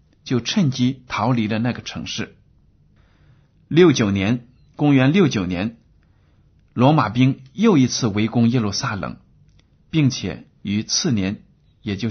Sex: male